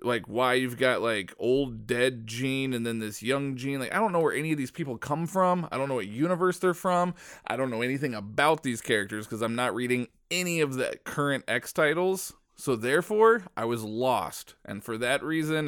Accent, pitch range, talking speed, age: American, 110-135 Hz, 220 wpm, 20-39